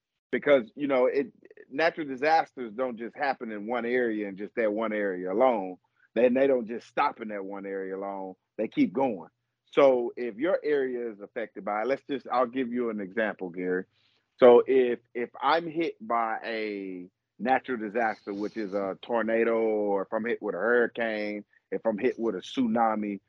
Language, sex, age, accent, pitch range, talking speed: English, male, 40-59, American, 110-130 Hz, 185 wpm